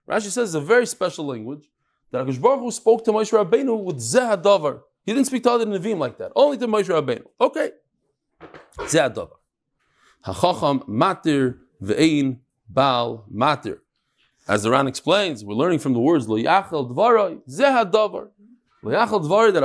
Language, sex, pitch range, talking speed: English, male, 145-225 Hz, 155 wpm